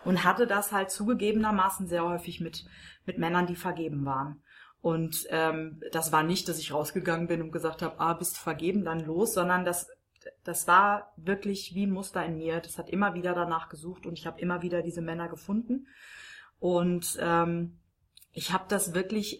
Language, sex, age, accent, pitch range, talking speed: German, female, 30-49, German, 165-190 Hz, 185 wpm